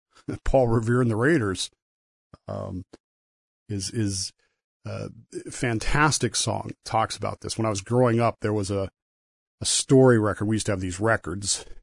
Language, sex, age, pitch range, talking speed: English, male, 40-59, 100-125 Hz, 155 wpm